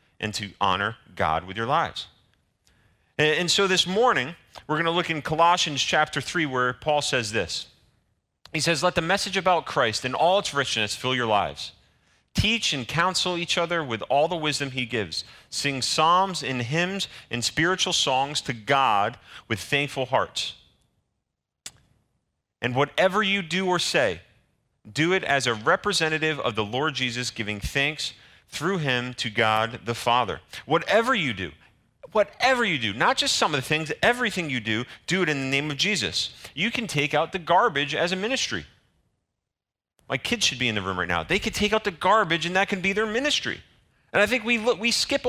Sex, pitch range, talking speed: male, 125-200 Hz, 185 wpm